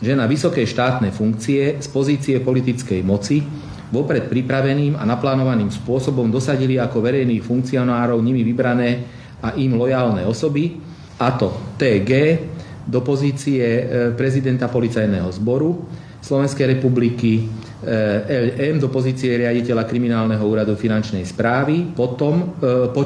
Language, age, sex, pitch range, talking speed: Slovak, 40-59, male, 115-140 Hz, 115 wpm